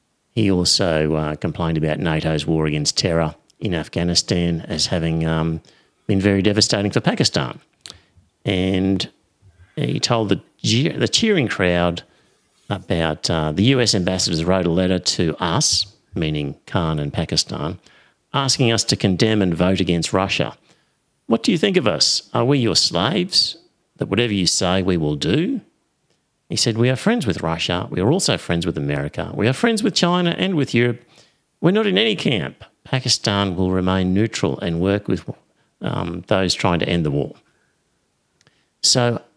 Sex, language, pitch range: male, English, 85-120 Hz